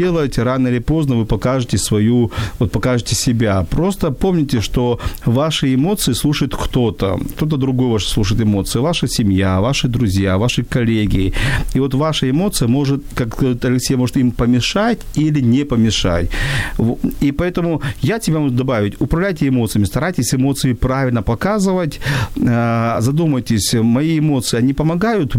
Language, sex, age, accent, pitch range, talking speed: Ukrainian, male, 40-59, native, 115-145 Hz, 135 wpm